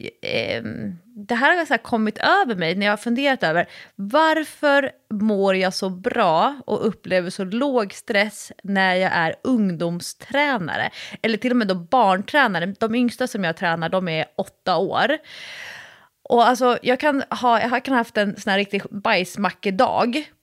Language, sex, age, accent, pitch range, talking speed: Swedish, female, 20-39, native, 200-260 Hz, 165 wpm